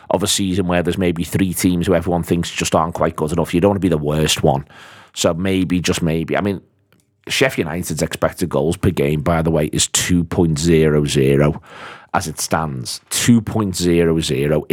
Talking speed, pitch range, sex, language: 185 wpm, 80-95 Hz, male, English